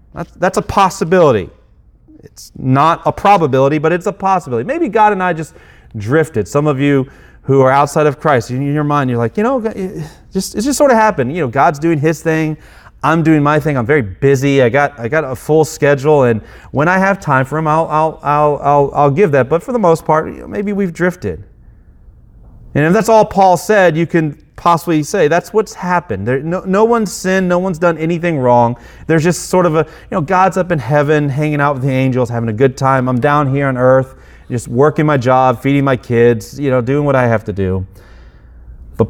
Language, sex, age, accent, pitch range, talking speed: English, male, 30-49, American, 120-165 Hz, 225 wpm